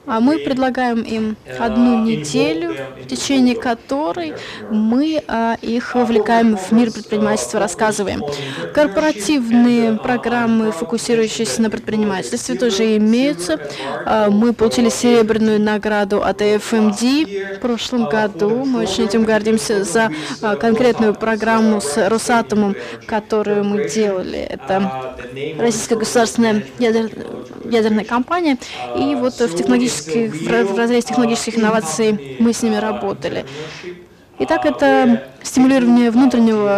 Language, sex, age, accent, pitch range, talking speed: Russian, female, 20-39, native, 210-240 Hz, 105 wpm